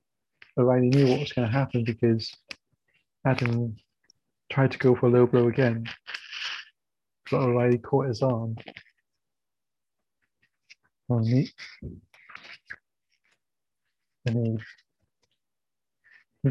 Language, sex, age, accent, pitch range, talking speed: English, male, 30-49, British, 115-130 Hz, 85 wpm